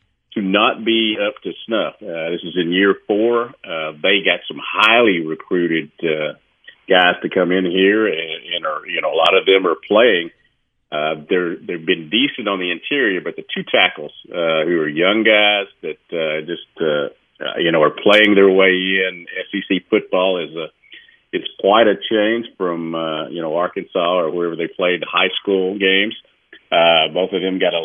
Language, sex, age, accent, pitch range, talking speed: English, male, 50-69, American, 90-110 Hz, 195 wpm